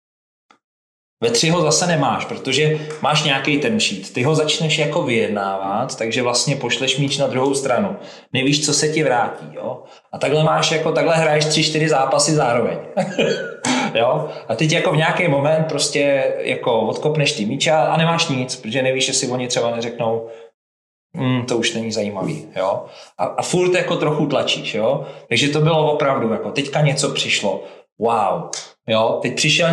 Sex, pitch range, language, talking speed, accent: male, 115-155 Hz, Czech, 170 wpm, native